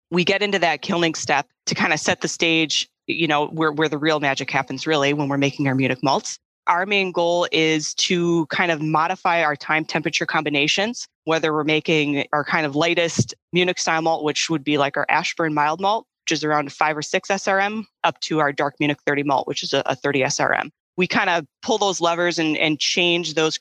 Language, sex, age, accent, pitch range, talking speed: English, female, 20-39, American, 155-180 Hz, 220 wpm